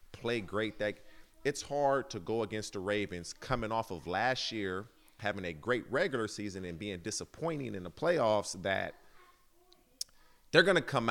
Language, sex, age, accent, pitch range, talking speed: English, male, 40-59, American, 100-125 Hz, 165 wpm